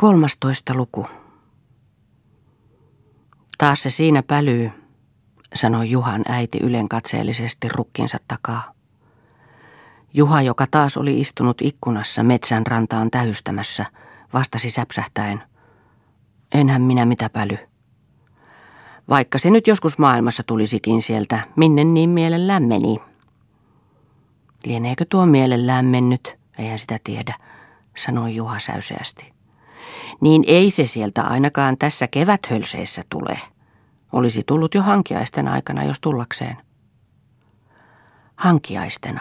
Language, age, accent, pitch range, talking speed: Finnish, 40-59, native, 115-145 Hz, 100 wpm